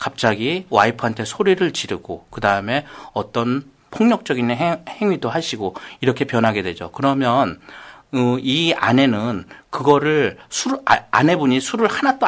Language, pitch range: Korean, 125-195 Hz